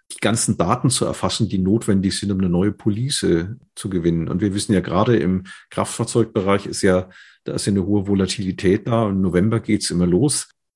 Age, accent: 50-69, German